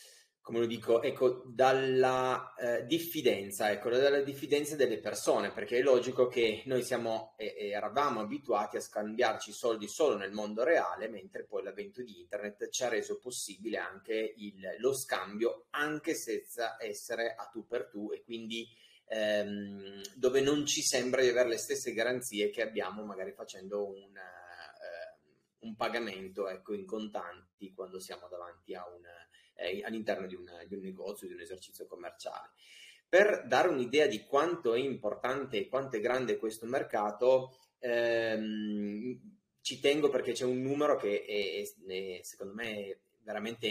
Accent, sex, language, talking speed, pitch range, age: native, male, Italian, 160 wpm, 105-140 Hz, 30-49